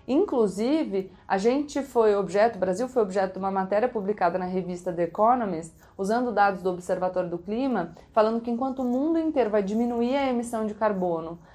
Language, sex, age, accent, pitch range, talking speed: Portuguese, female, 30-49, Brazilian, 180-225 Hz, 180 wpm